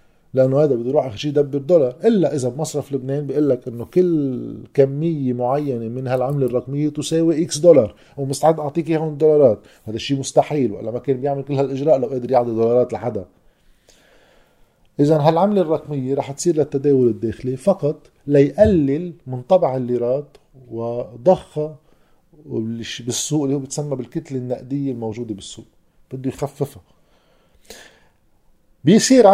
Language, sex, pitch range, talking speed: Arabic, male, 125-150 Hz, 135 wpm